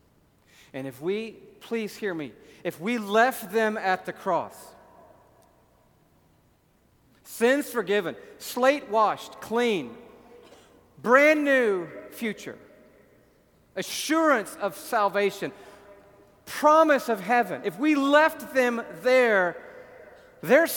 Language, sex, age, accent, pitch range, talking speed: English, male, 50-69, American, 210-255 Hz, 95 wpm